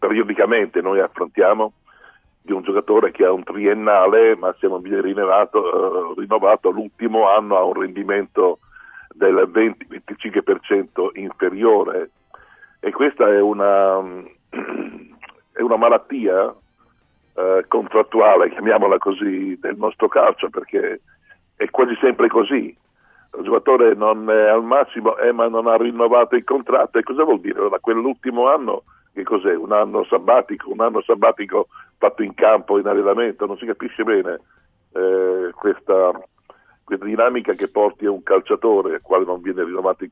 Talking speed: 145 wpm